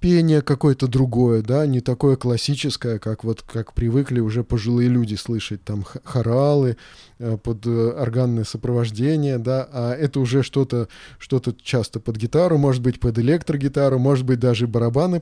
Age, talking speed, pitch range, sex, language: 20-39, 145 wpm, 115-140 Hz, male, Russian